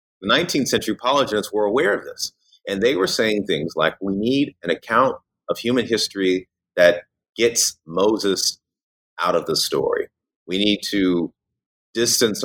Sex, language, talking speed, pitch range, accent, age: male, English, 155 wpm, 80-120 Hz, American, 30-49